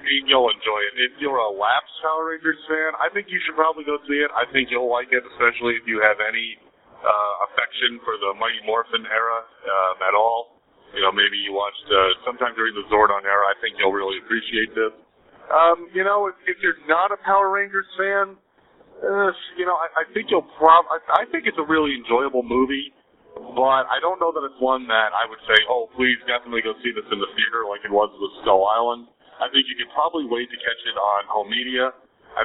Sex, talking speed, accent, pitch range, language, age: male, 225 wpm, American, 110-155 Hz, English, 40-59